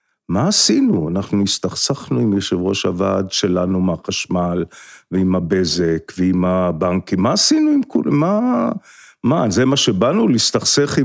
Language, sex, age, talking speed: Hebrew, male, 50-69, 130 wpm